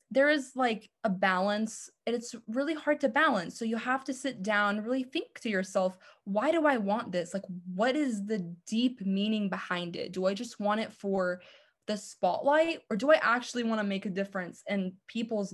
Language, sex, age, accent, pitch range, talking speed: English, female, 20-39, American, 195-255 Hz, 205 wpm